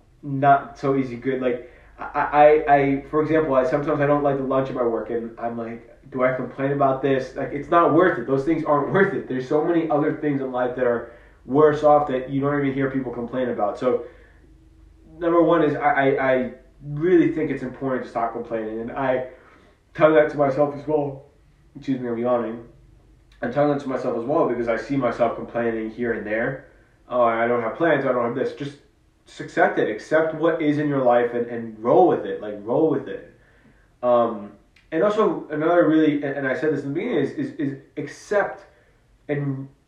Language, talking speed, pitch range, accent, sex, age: English, 215 wpm, 120-150 Hz, American, male, 20-39